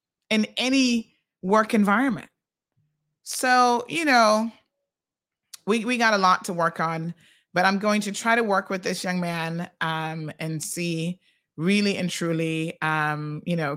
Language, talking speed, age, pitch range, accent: English, 155 wpm, 30-49, 155-185 Hz, American